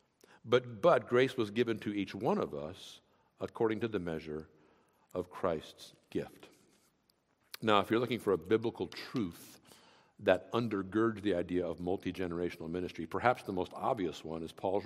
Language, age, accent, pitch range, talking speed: English, 60-79, American, 105-160 Hz, 160 wpm